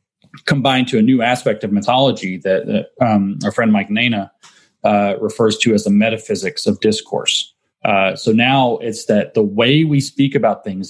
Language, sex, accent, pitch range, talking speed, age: English, male, American, 105-140 Hz, 180 wpm, 30-49